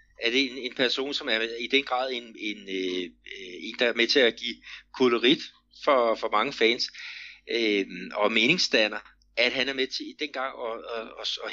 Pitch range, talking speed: 105-130 Hz, 180 wpm